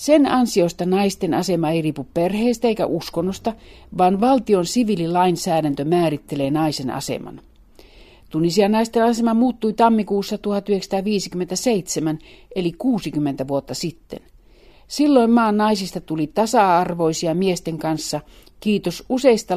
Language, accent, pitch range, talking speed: Finnish, native, 160-220 Hz, 105 wpm